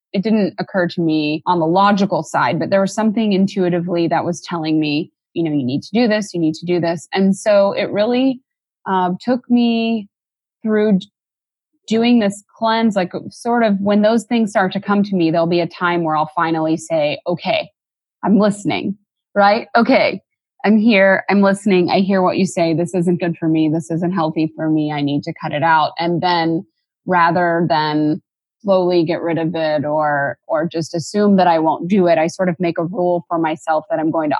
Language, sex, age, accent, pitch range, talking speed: English, female, 20-39, American, 160-195 Hz, 210 wpm